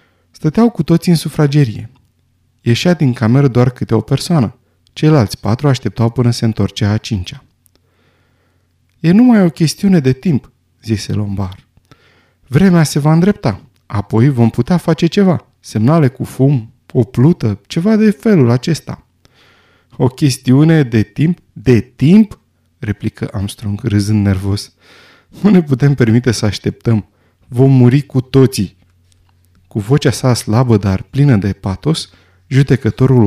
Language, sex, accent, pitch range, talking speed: Romanian, male, native, 100-145 Hz, 135 wpm